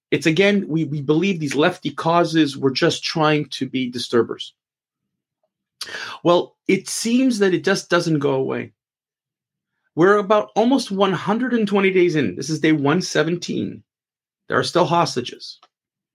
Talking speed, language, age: 140 wpm, English, 40-59